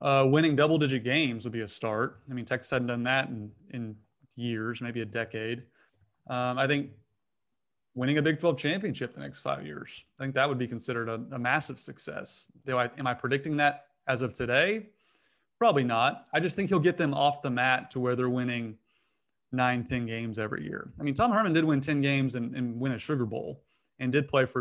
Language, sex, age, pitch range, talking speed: English, male, 30-49, 120-140 Hz, 215 wpm